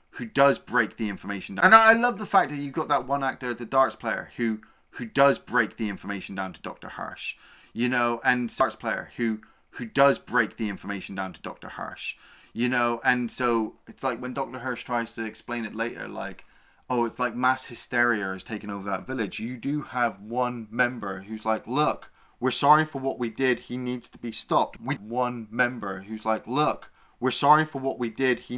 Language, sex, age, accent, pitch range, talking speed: English, male, 20-39, British, 105-130 Hz, 225 wpm